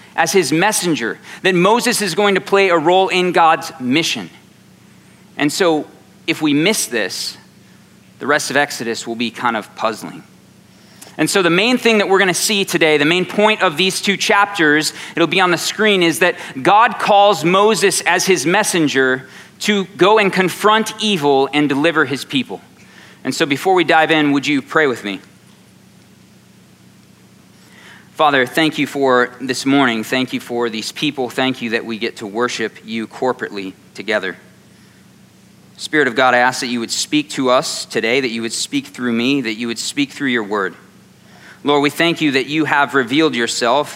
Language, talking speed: English, 185 wpm